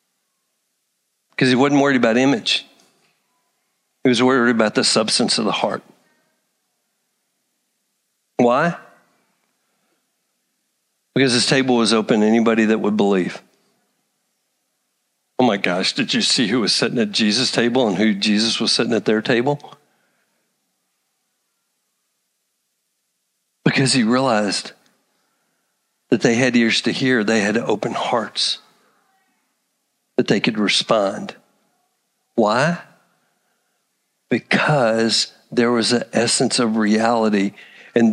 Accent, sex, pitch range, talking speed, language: American, male, 110-135 Hz, 115 wpm, English